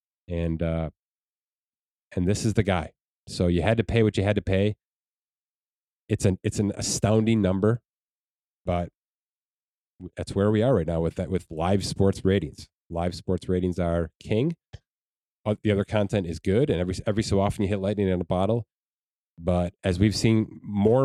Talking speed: 175 wpm